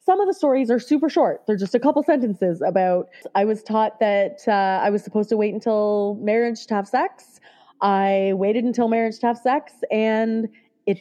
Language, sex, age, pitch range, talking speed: English, female, 20-39, 195-240 Hz, 200 wpm